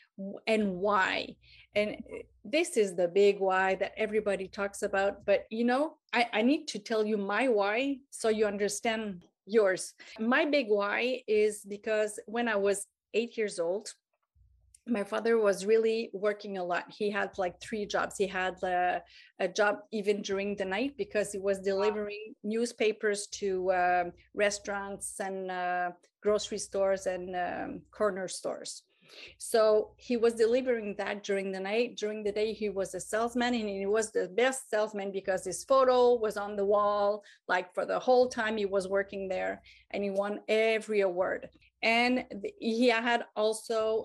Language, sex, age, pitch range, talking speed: English, female, 30-49, 195-225 Hz, 165 wpm